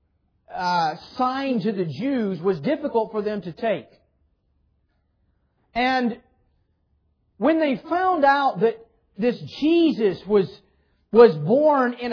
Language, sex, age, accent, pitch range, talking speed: English, male, 40-59, American, 195-265 Hz, 115 wpm